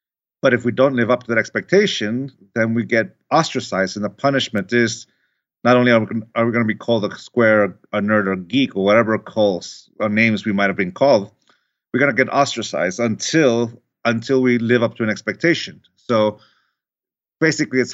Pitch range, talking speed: 110-130 Hz, 190 wpm